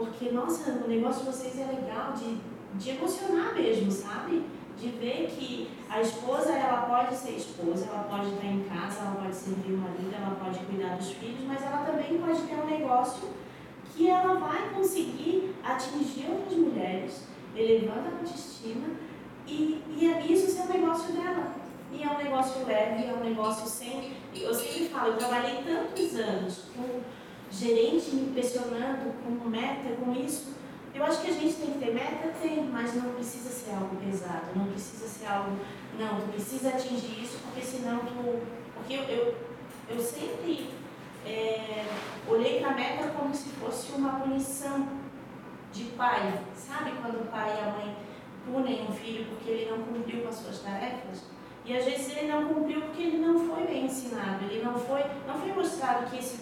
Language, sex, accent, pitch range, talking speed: Portuguese, female, Brazilian, 225-290 Hz, 180 wpm